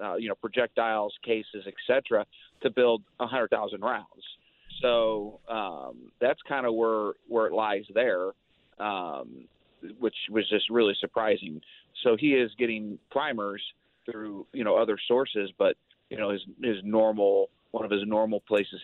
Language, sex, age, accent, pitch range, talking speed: English, male, 40-59, American, 100-125 Hz, 155 wpm